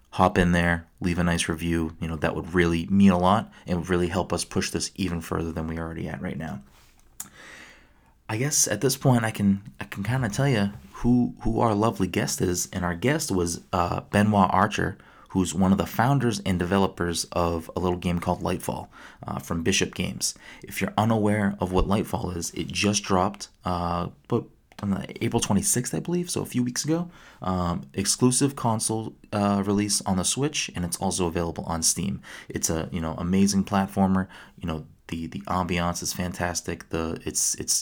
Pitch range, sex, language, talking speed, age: 85-105 Hz, male, English, 200 wpm, 30-49